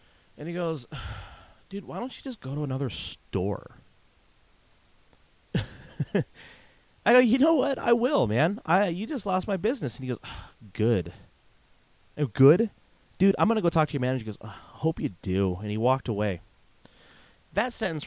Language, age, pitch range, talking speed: English, 30-49, 100-155 Hz, 185 wpm